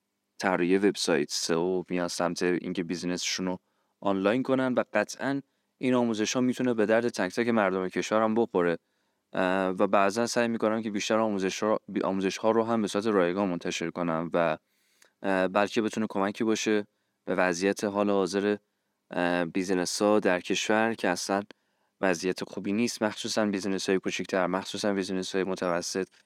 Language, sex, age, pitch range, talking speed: Persian, male, 20-39, 95-115 Hz, 155 wpm